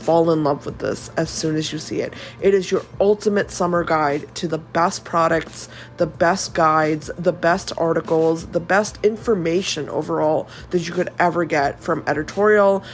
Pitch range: 160-190 Hz